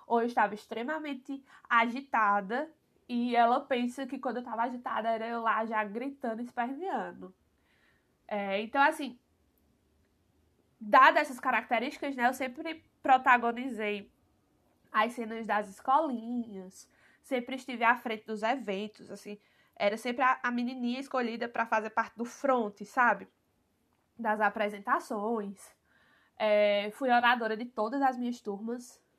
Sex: female